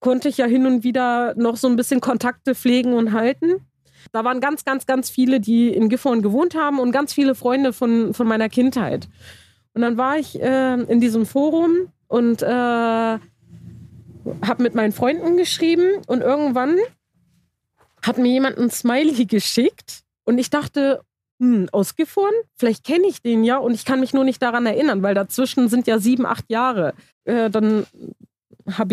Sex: female